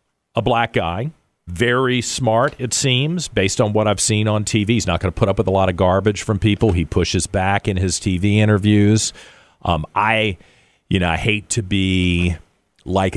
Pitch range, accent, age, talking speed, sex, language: 95-130 Hz, American, 40-59, 185 wpm, male, English